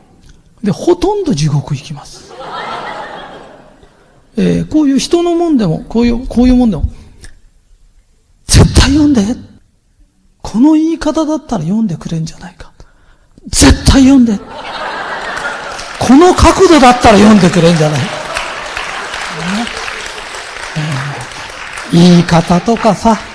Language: Japanese